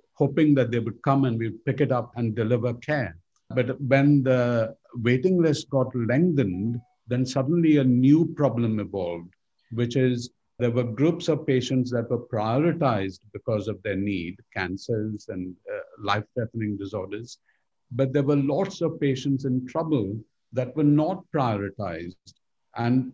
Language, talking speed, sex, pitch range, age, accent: English, 150 wpm, male, 110-135 Hz, 50-69, Indian